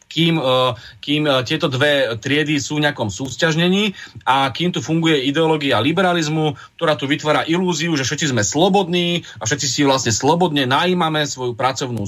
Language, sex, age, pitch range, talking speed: Slovak, male, 30-49, 125-160 Hz, 155 wpm